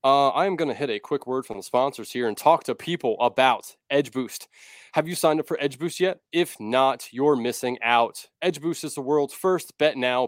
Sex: male